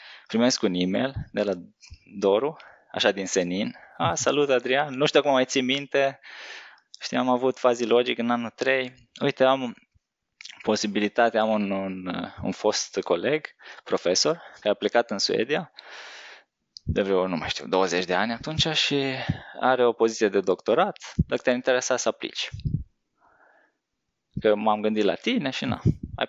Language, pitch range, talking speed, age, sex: Romanian, 105-135 Hz, 160 wpm, 20-39, male